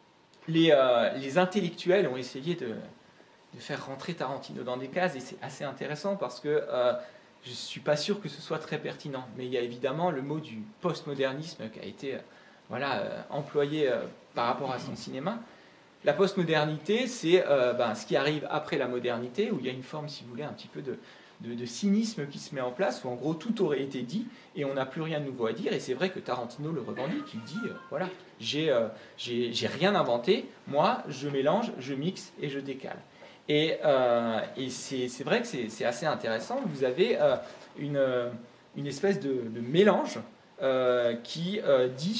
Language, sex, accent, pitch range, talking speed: French, male, French, 125-185 Hz, 215 wpm